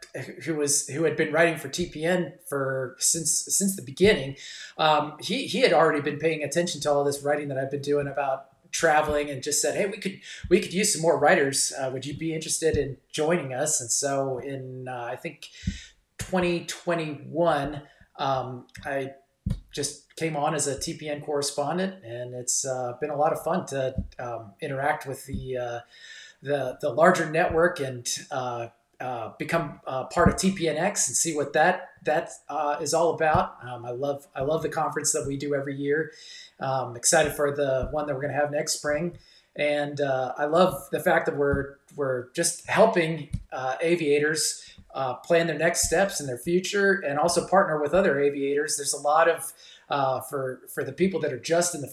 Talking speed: 195 wpm